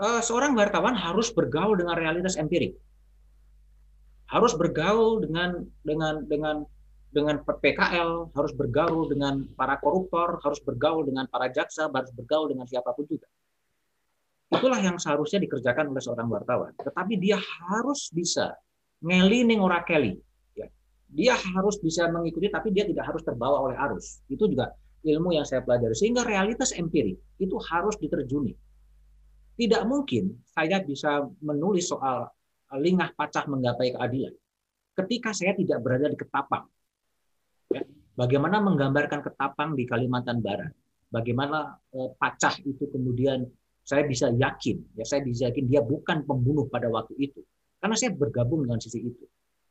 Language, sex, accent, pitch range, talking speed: Indonesian, male, native, 135-185 Hz, 135 wpm